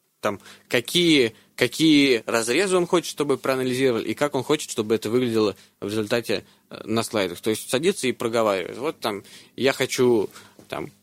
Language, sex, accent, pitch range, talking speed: Russian, male, native, 105-135 Hz, 160 wpm